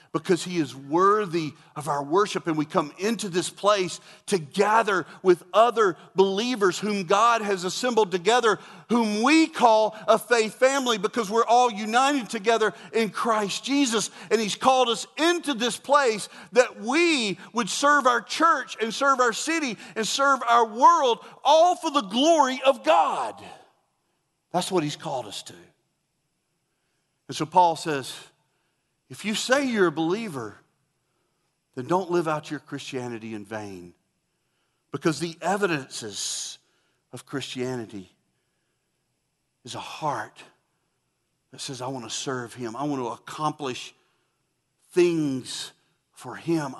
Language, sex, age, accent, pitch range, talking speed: English, male, 40-59, American, 145-235 Hz, 140 wpm